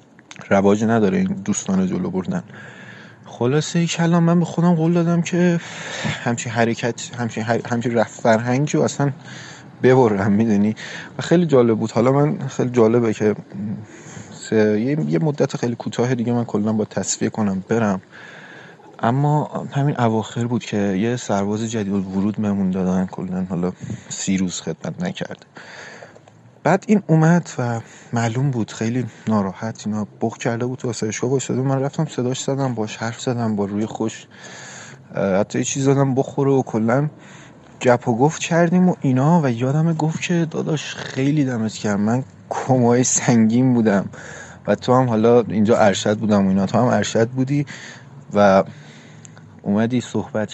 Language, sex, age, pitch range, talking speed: Persian, male, 30-49, 110-145 Hz, 155 wpm